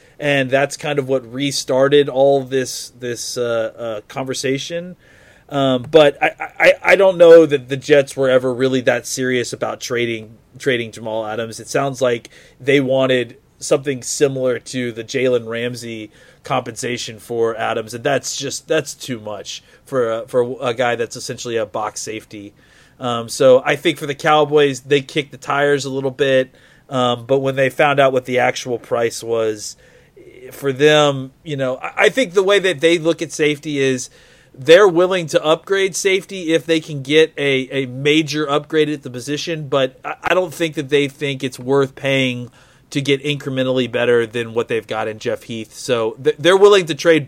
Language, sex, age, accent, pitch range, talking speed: English, male, 30-49, American, 125-150 Hz, 180 wpm